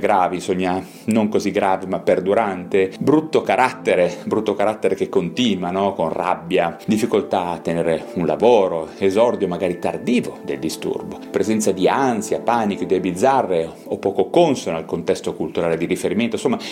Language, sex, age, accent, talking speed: Italian, male, 30-49, native, 145 wpm